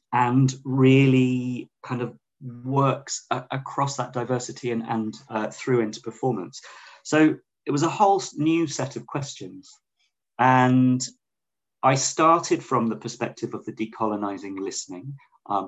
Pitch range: 105-135 Hz